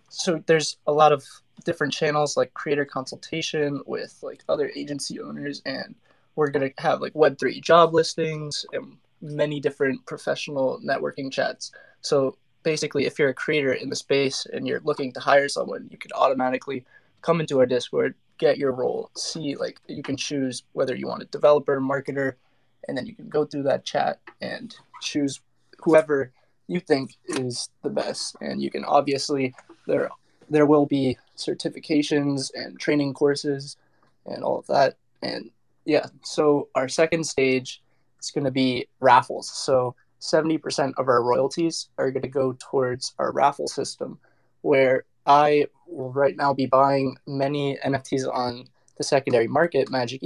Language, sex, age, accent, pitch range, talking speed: English, male, 20-39, American, 130-150 Hz, 160 wpm